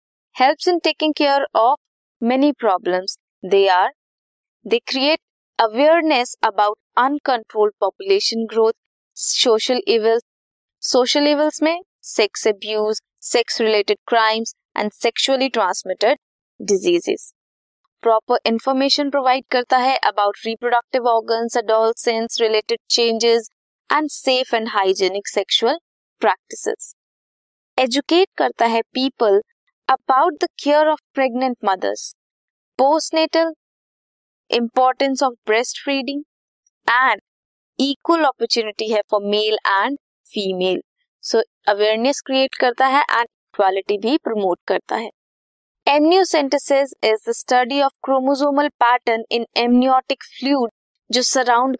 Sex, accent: female, native